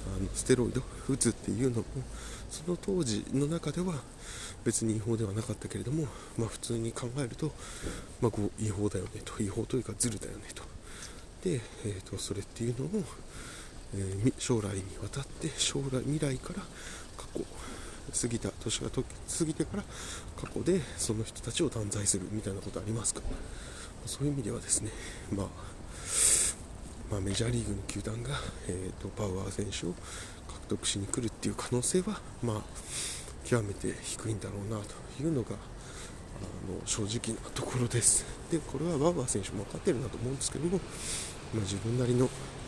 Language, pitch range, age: Japanese, 100-125 Hz, 20-39